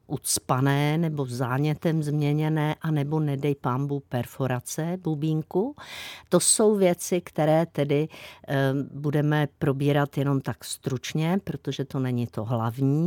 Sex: female